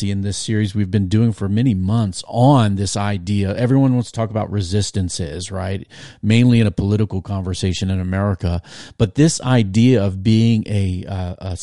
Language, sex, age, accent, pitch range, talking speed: English, male, 40-59, American, 100-120 Hz, 175 wpm